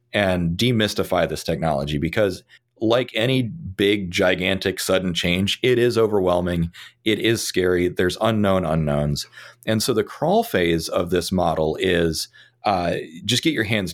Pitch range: 90-115 Hz